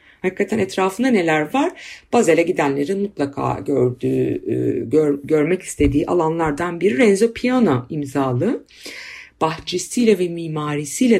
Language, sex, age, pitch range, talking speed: Turkish, female, 50-69, 145-215 Hz, 100 wpm